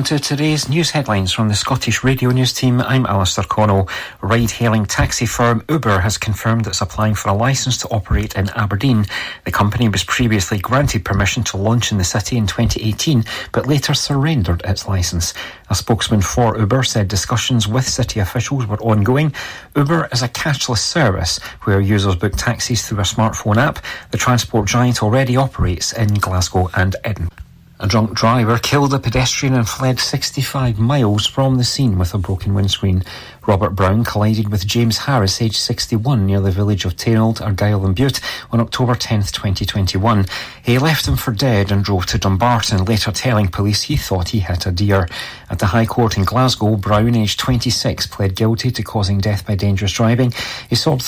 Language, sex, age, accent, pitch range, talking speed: English, male, 40-59, British, 100-125 Hz, 180 wpm